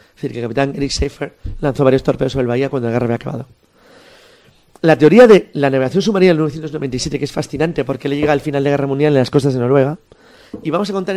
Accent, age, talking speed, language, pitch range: Spanish, 30-49, 255 wpm, Spanish, 130-160 Hz